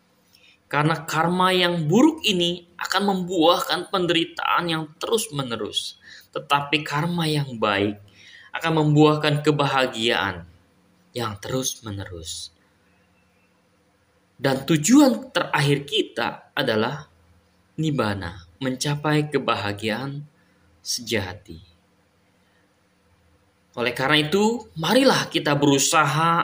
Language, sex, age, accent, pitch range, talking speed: Indonesian, male, 20-39, native, 100-160 Hz, 75 wpm